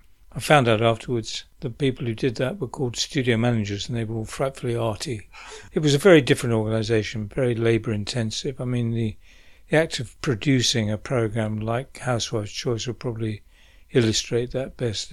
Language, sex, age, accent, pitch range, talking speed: English, male, 60-79, British, 110-130 Hz, 180 wpm